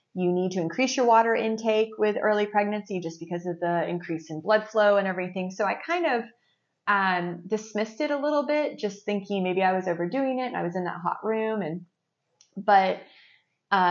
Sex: female